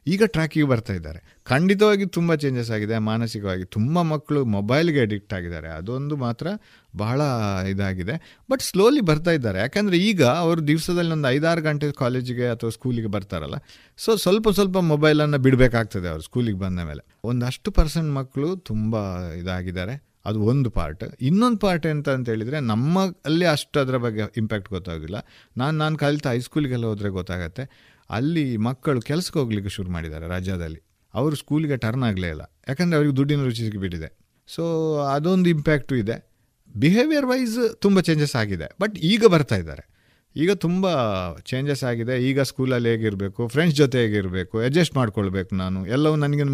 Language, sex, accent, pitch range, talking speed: Kannada, male, native, 105-155 Hz, 145 wpm